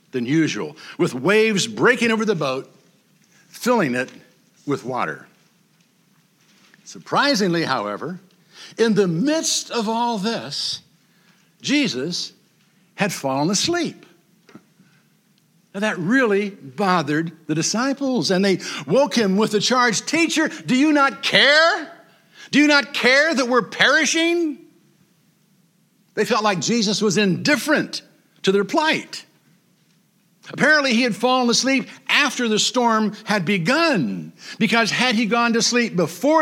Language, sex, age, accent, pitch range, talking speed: English, male, 60-79, American, 185-250 Hz, 125 wpm